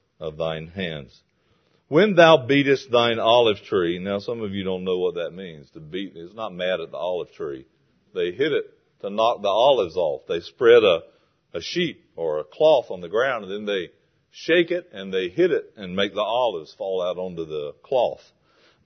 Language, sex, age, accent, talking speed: English, male, 40-59, American, 205 wpm